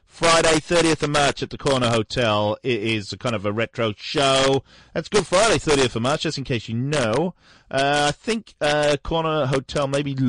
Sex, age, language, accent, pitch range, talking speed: male, 30-49, English, British, 100-140 Hz, 205 wpm